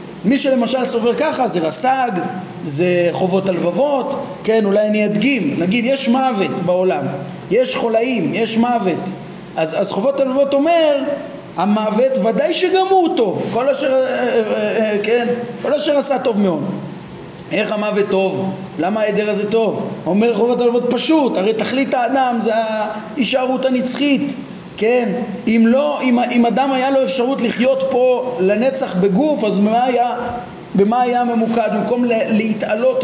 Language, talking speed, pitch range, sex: Hebrew, 140 wpm, 215-265 Hz, male